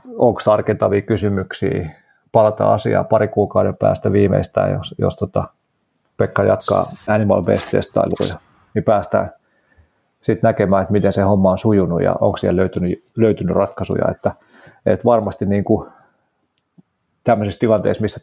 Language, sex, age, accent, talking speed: Finnish, male, 30-49, native, 130 wpm